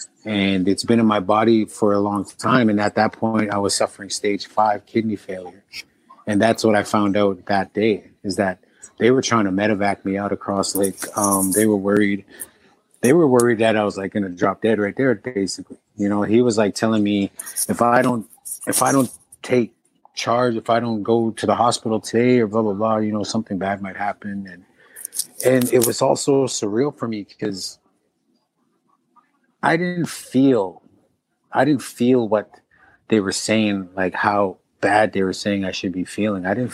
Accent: American